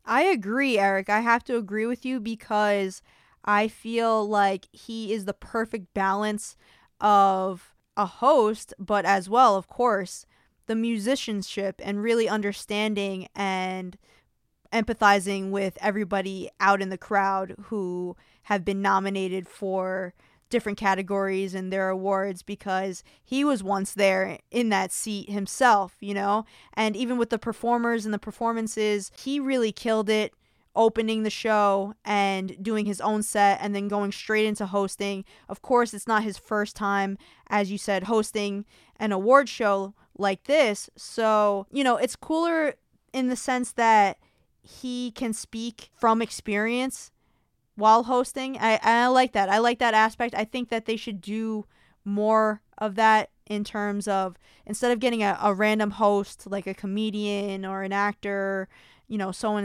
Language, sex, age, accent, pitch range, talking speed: English, female, 20-39, American, 195-225 Hz, 155 wpm